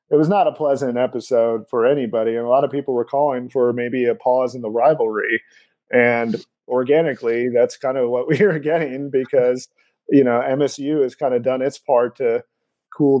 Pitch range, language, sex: 115-135 Hz, English, male